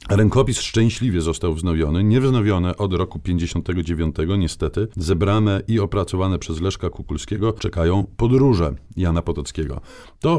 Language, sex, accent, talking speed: Polish, male, native, 115 wpm